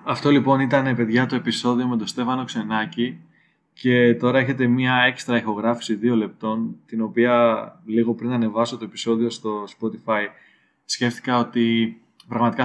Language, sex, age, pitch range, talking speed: Greek, male, 20-39, 115-135 Hz, 140 wpm